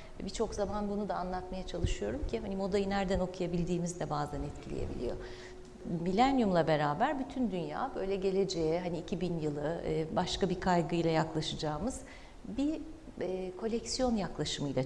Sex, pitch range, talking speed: female, 165-245 Hz, 125 wpm